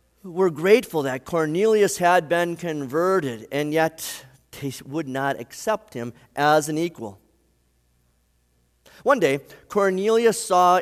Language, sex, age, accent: English, male, 40-59, American